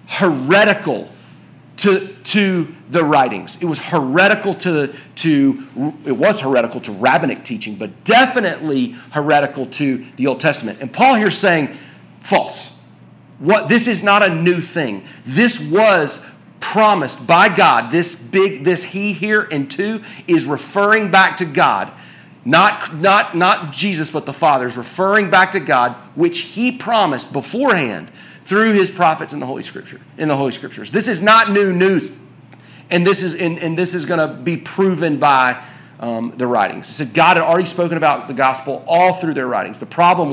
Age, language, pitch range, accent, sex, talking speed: 40-59, English, 145-195 Hz, American, male, 170 wpm